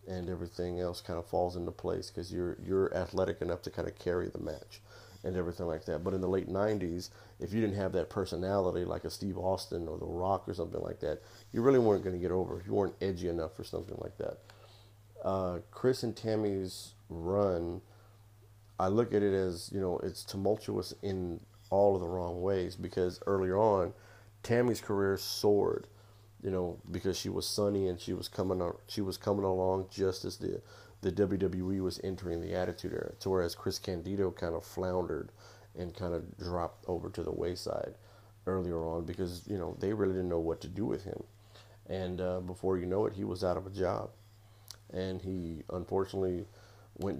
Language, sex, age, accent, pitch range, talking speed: English, male, 40-59, American, 90-105 Hz, 200 wpm